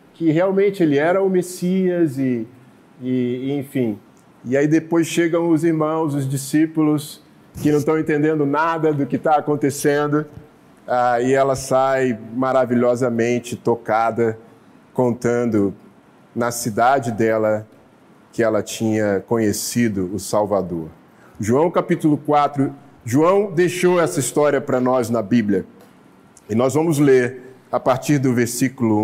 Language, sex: Portuguese, male